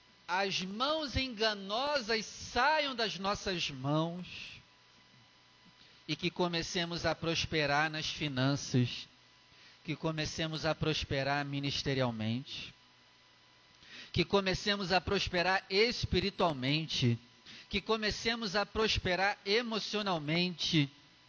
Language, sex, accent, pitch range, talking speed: Portuguese, male, Brazilian, 140-190 Hz, 80 wpm